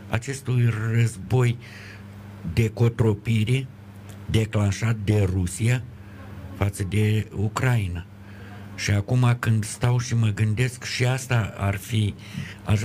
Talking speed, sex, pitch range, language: 105 wpm, male, 100-120 Hz, Romanian